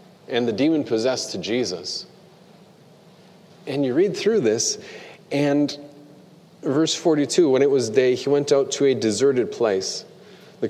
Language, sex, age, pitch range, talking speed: English, male, 40-59, 130-190 Hz, 140 wpm